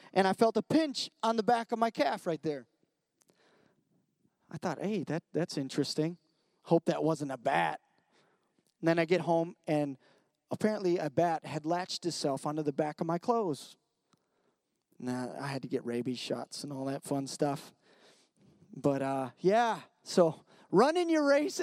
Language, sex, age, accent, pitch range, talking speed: English, male, 30-49, American, 160-215 Hz, 165 wpm